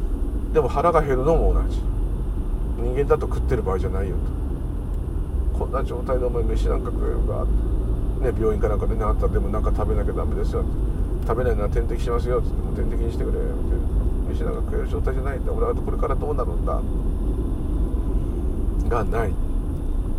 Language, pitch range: Japanese, 75-90 Hz